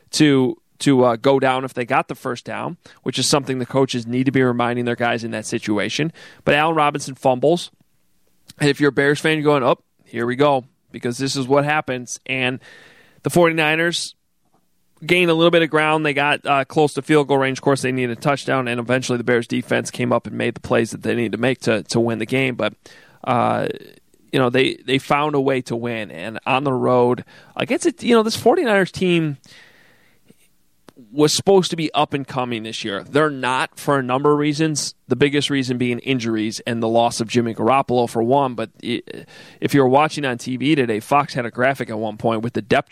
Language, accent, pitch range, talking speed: English, American, 125-150 Hz, 225 wpm